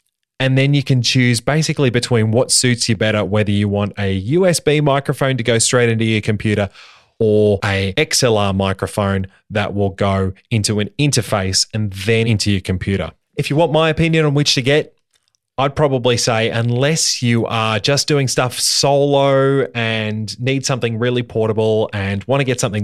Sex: male